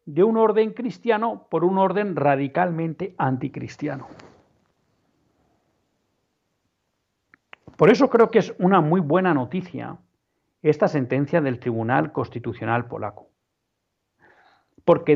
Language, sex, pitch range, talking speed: Spanish, male, 135-190 Hz, 100 wpm